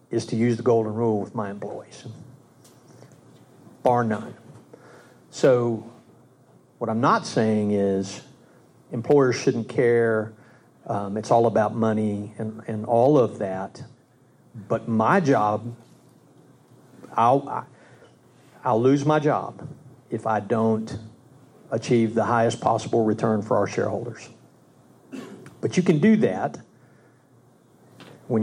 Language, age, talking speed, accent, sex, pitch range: English, 50-69, 115 wpm, American, male, 105-120 Hz